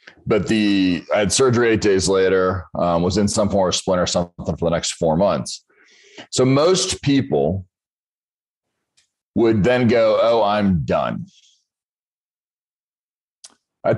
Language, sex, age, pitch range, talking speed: English, male, 40-59, 90-130 Hz, 135 wpm